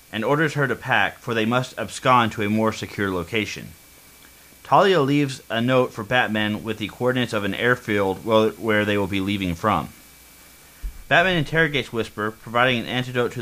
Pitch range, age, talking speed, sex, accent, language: 100-130 Hz, 30-49, 175 wpm, male, American, English